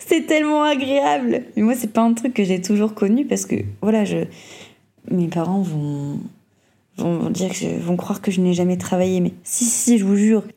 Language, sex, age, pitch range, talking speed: French, female, 20-39, 185-235 Hz, 205 wpm